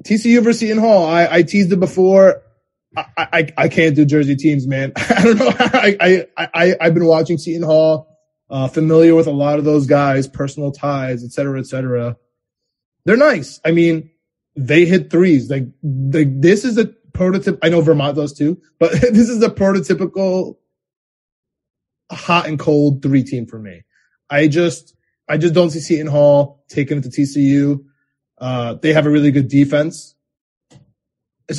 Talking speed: 175 wpm